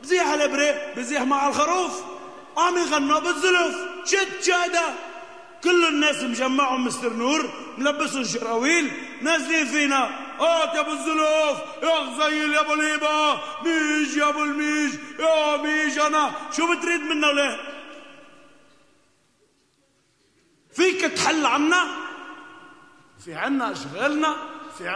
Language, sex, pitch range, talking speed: Arabic, male, 270-325 Hz, 110 wpm